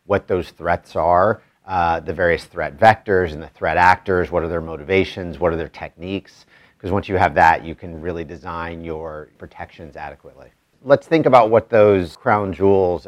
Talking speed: 185 wpm